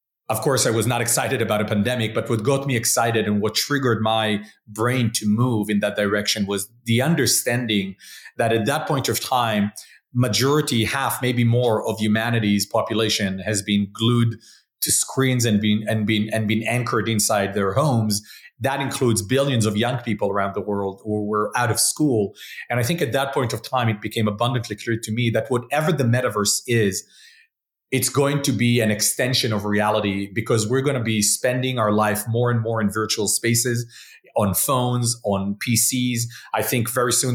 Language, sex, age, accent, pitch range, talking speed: English, male, 30-49, Canadian, 105-125 Hz, 190 wpm